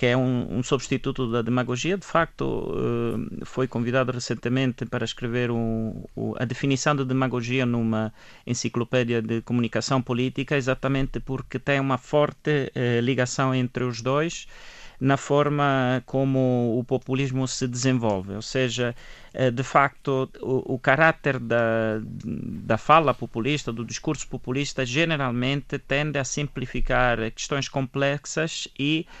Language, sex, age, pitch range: Portuguese, male, 30-49, 120-140 Hz